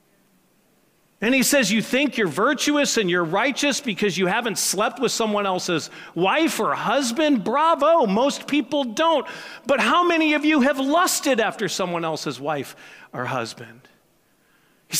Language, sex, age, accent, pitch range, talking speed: English, male, 40-59, American, 190-255 Hz, 150 wpm